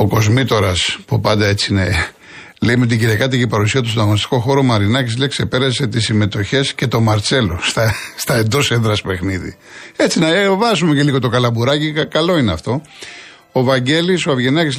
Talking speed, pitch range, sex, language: 185 wpm, 110-140 Hz, male, Greek